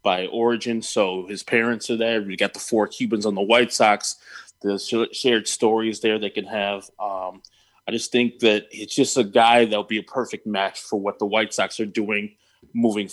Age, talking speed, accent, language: 20-39, 210 wpm, American, English